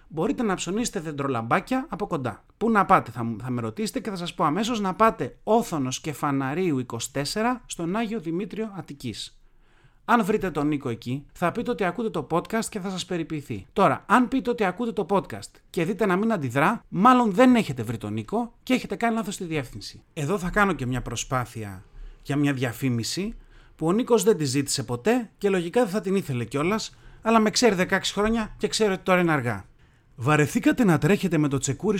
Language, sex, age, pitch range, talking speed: Greek, male, 30-49, 135-205 Hz, 195 wpm